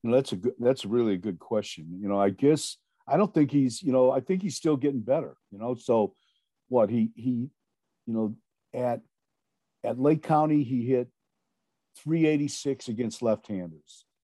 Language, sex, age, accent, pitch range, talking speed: English, male, 50-69, American, 120-145 Hz, 185 wpm